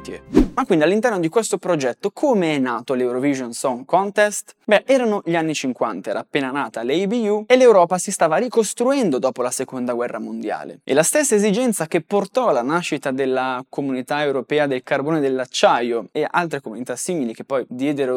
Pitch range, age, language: 135-210 Hz, 20-39, Italian